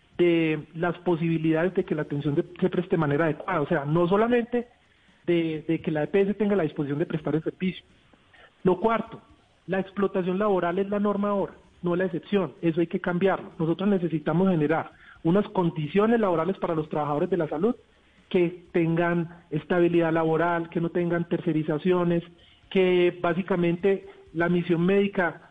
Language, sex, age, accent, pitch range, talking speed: Spanish, male, 40-59, Colombian, 165-195 Hz, 160 wpm